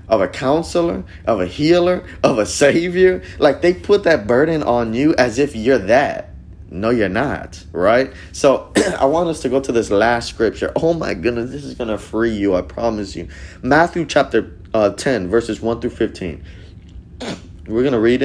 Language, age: English, 20-39